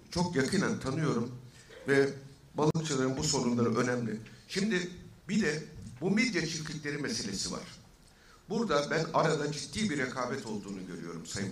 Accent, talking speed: native, 130 wpm